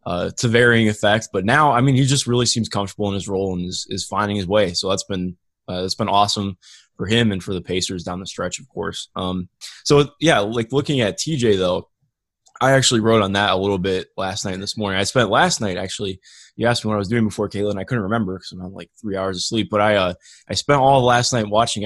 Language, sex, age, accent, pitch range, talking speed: English, male, 20-39, American, 100-130 Hz, 265 wpm